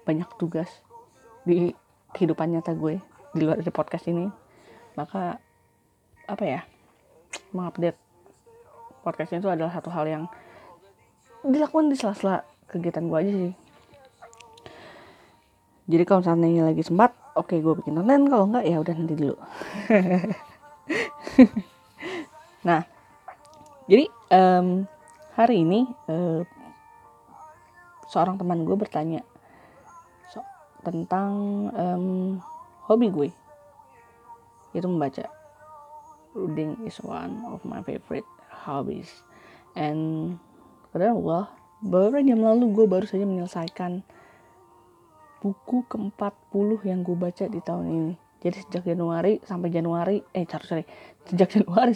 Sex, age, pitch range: female, 20-39, 170-220 Hz